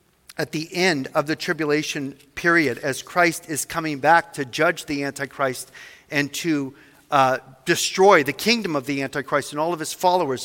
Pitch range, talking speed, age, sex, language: 155-195 Hz, 170 wpm, 40-59, male, English